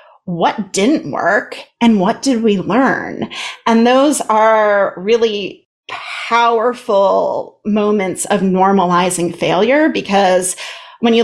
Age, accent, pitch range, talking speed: 30-49, American, 195-275 Hz, 105 wpm